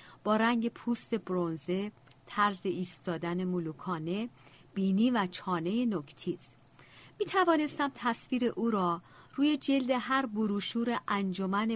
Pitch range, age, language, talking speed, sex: 170-235 Hz, 50-69, Persian, 105 wpm, female